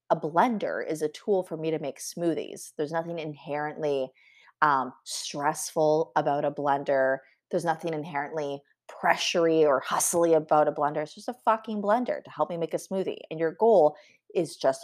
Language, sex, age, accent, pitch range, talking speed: English, female, 30-49, American, 150-205 Hz, 175 wpm